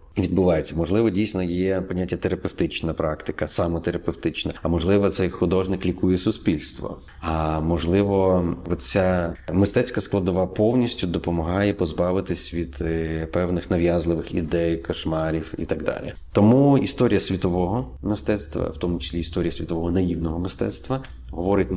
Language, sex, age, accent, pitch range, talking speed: Ukrainian, male, 30-49, native, 85-95 Hz, 115 wpm